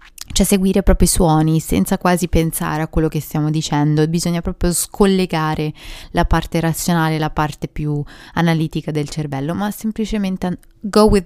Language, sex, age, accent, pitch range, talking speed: Italian, female, 20-39, native, 155-180 Hz, 155 wpm